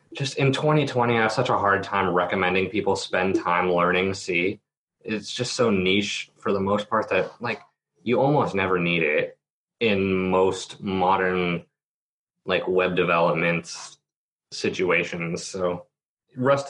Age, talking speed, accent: 20-39, 140 wpm, American